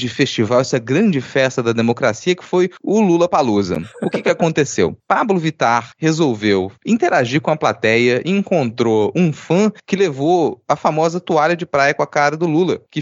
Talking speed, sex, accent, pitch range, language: 175 wpm, male, Brazilian, 125-180 Hz, Portuguese